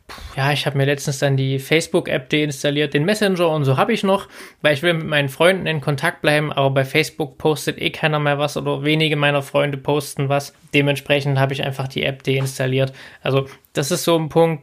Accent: German